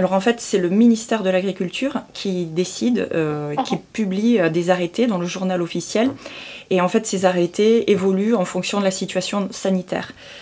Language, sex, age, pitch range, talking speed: French, female, 30-49, 180-210 Hz, 180 wpm